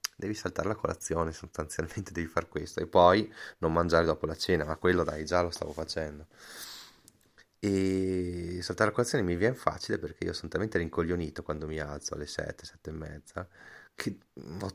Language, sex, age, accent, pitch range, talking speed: Italian, male, 30-49, native, 80-90 Hz, 175 wpm